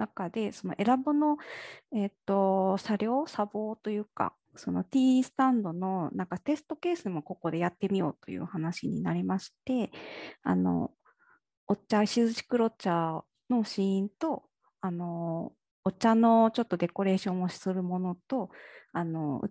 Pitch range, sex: 175-230 Hz, female